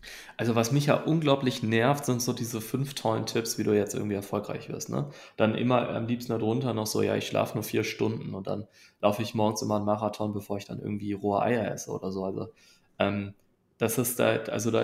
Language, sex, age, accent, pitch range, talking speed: German, male, 20-39, German, 105-125 Hz, 210 wpm